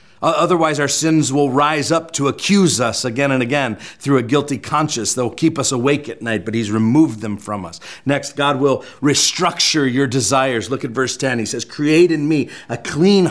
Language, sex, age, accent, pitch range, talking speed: English, male, 40-59, American, 135-175 Hz, 205 wpm